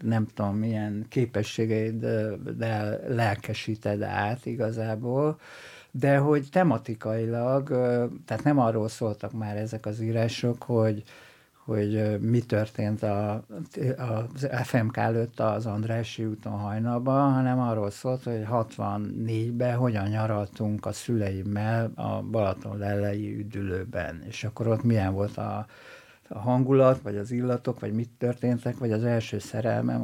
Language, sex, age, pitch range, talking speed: Hungarian, male, 60-79, 105-125 Hz, 125 wpm